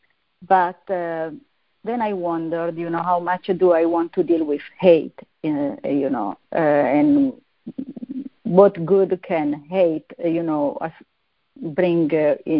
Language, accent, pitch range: English, Italian, 165-195 Hz